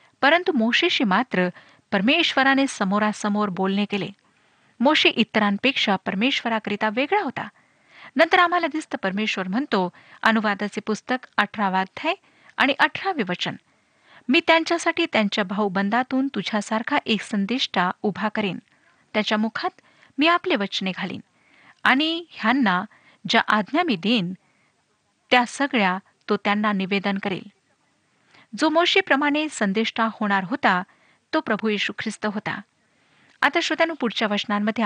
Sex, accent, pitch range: female, native, 205-270 Hz